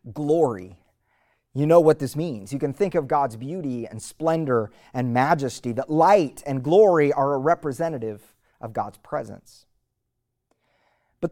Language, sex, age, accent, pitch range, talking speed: English, male, 30-49, American, 120-165 Hz, 145 wpm